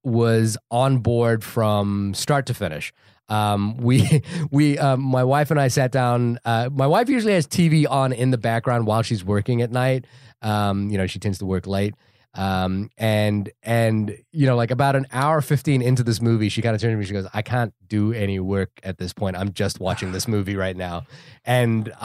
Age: 20-39